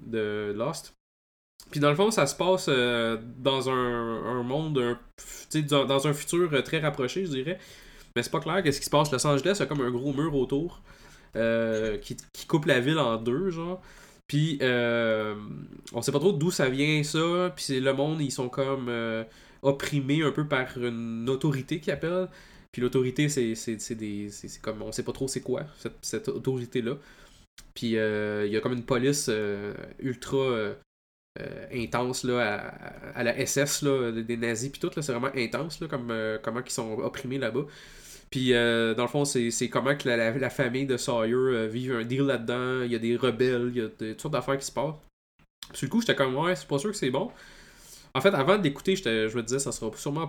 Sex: male